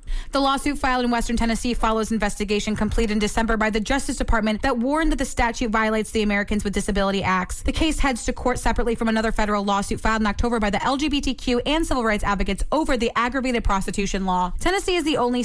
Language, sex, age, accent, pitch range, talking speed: English, female, 20-39, American, 210-260 Hz, 215 wpm